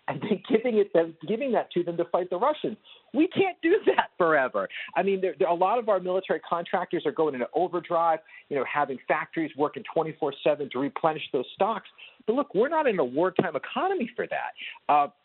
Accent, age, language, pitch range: American, 40-59, English, 135-185 Hz